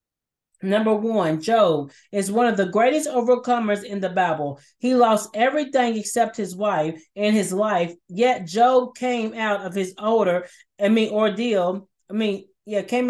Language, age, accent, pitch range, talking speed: English, 30-49, American, 195-235 Hz, 160 wpm